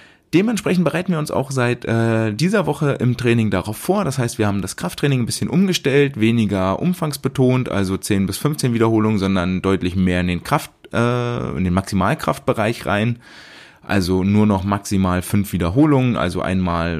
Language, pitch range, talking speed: German, 95-125 Hz, 170 wpm